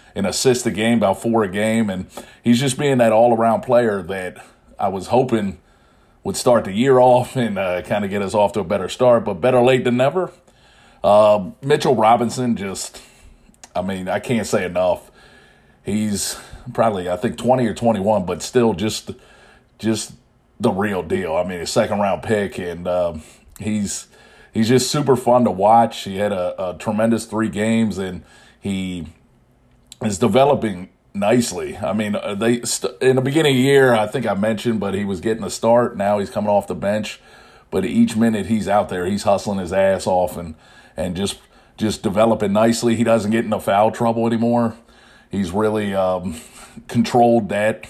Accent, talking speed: American, 180 wpm